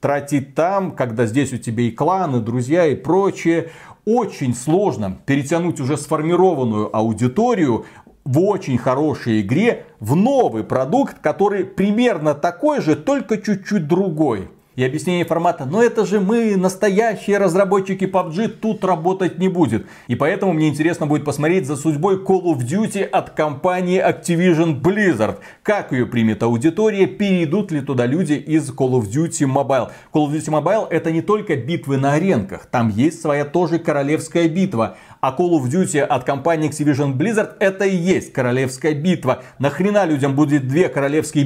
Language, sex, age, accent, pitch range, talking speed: Russian, male, 40-59, native, 135-185 Hz, 155 wpm